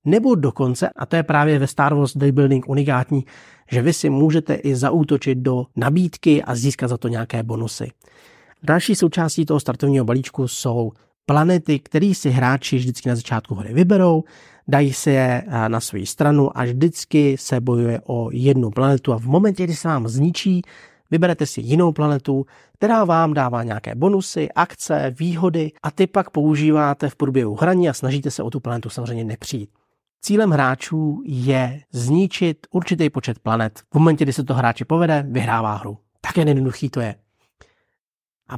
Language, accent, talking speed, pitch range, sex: Czech, native, 165 wpm, 125-160 Hz, male